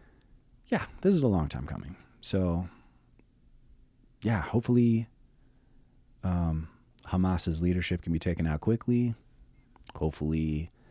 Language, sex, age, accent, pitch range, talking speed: English, male, 30-49, American, 80-120 Hz, 105 wpm